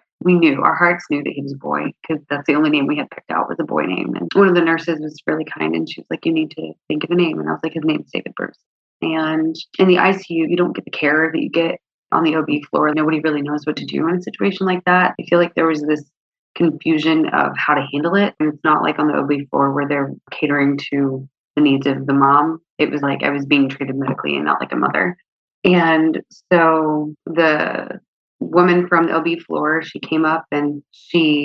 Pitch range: 145-170 Hz